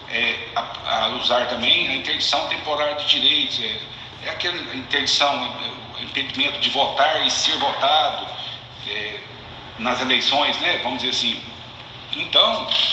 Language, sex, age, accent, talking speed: Portuguese, male, 60-79, Brazilian, 125 wpm